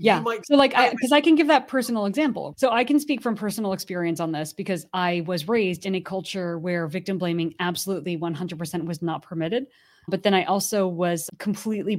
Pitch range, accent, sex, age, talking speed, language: 165-200 Hz, American, female, 20-39, 205 wpm, English